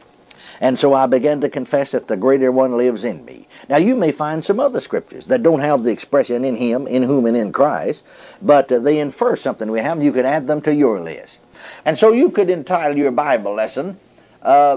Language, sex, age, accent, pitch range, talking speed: English, male, 60-79, American, 125-170 Hz, 225 wpm